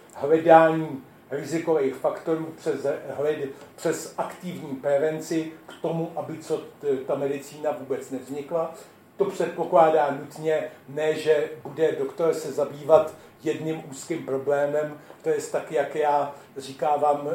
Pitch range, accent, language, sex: 145-170 Hz, native, Czech, male